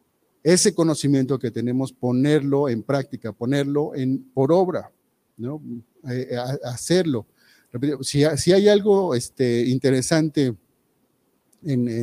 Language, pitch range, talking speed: Spanish, 130-160 Hz, 105 wpm